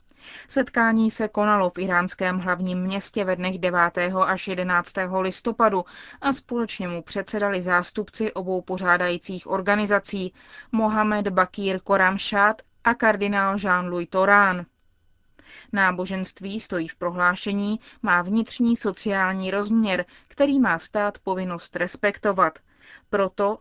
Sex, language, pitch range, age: female, Czech, 185-220 Hz, 20-39